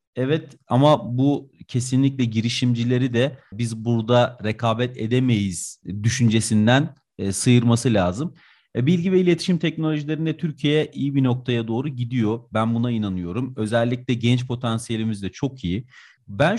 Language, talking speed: Turkish, 125 wpm